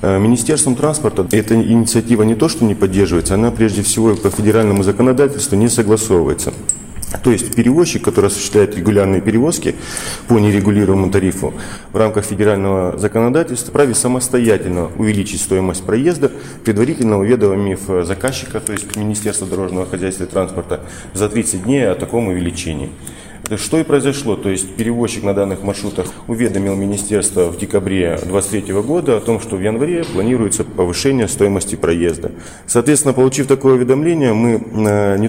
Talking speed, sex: 140 wpm, male